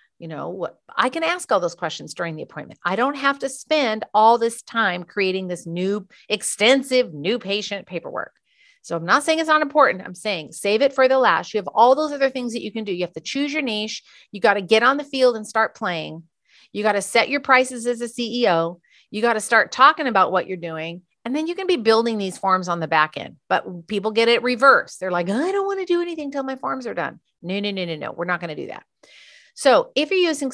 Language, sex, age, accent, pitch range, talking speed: English, female, 40-59, American, 200-270 Hz, 255 wpm